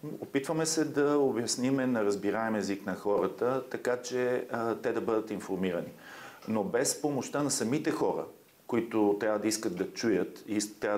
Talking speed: 170 wpm